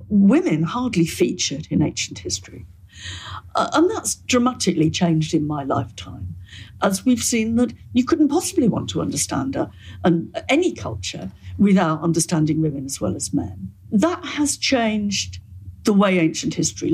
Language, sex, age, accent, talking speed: English, female, 60-79, British, 140 wpm